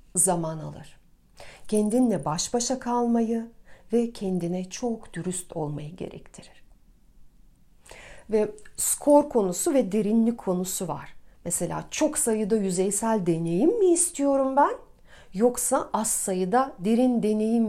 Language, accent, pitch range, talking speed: Turkish, native, 195-280 Hz, 110 wpm